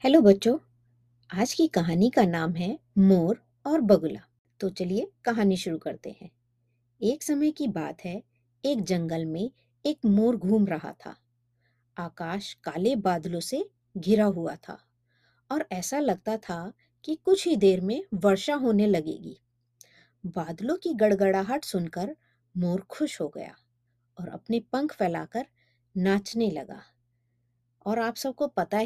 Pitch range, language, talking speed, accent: 165-230 Hz, Hindi, 140 wpm, native